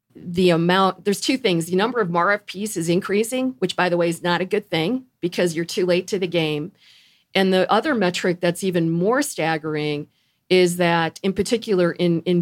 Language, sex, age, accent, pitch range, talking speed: English, female, 40-59, American, 165-195 Hz, 200 wpm